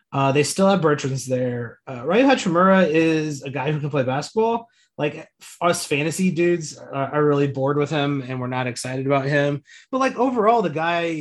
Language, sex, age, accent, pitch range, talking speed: English, male, 30-49, American, 140-185 Hz, 200 wpm